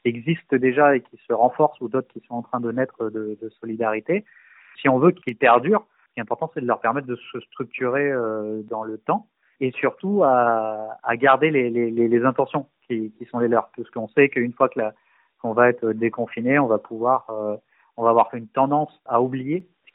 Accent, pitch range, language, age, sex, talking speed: French, 110-135 Hz, French, 30-49, male, 215 wpm